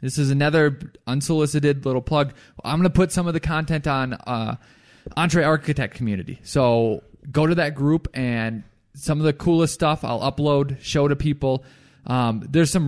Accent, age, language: American, 20-39, English